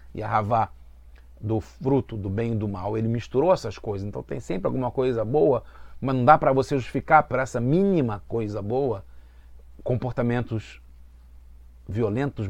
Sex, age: male, 40-59